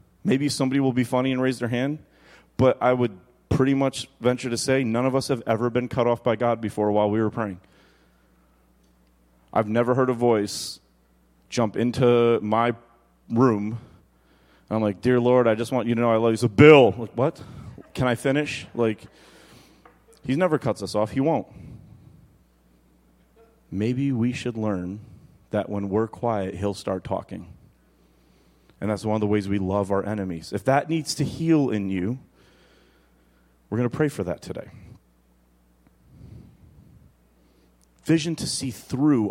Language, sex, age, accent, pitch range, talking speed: English, male, 30-49, American, 95-125 Hz, 165 wpm